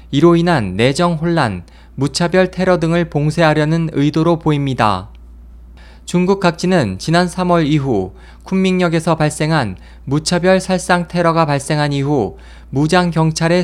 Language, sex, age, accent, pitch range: Korean, male, 20-39, native, 125-175 Hz